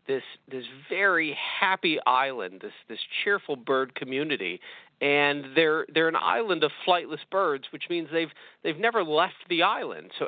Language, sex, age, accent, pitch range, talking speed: English, male, 40-59, American, 135-175 Hz, 160 wpm